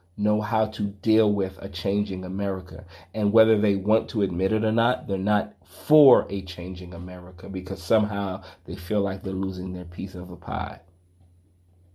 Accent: American